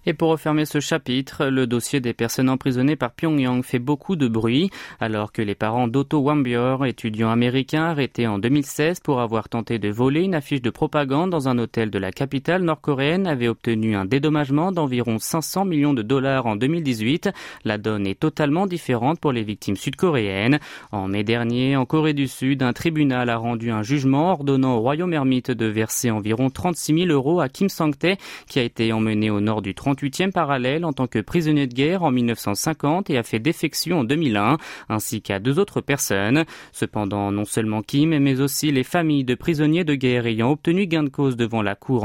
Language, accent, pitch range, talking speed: French, French, 115-155 Hz, 195 wpm